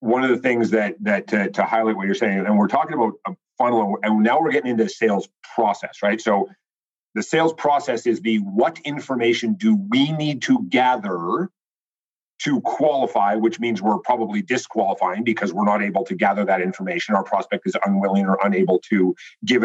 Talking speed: 190 wpm